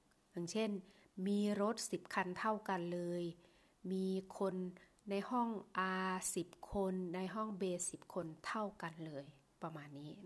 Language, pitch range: Thai, 175-215 Hz